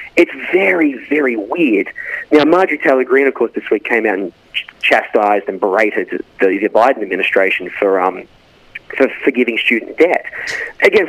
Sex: male